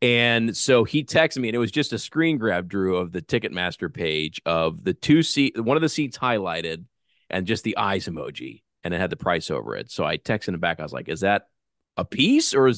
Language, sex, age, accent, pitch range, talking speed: English, male, 40-59, American, 95-135 Hz, 245 wpm